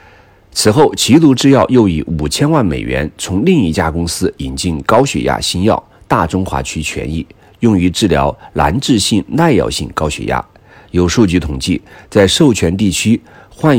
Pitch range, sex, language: 80-105 Hz, male, Chinese